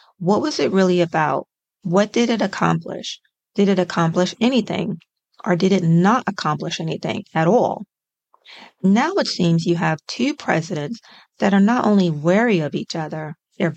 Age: 30-49